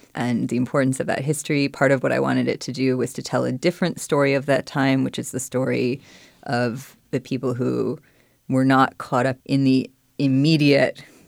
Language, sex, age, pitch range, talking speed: English, female, 20-39, 130-140 Hz, 200 wpm